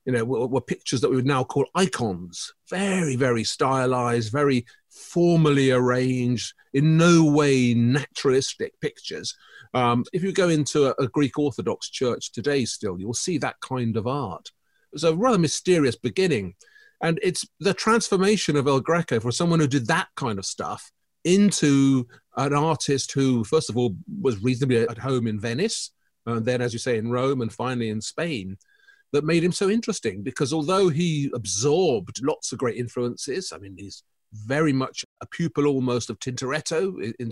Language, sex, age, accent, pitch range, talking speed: English, male, 40-59, British, 120-170 Hz, 175 wpm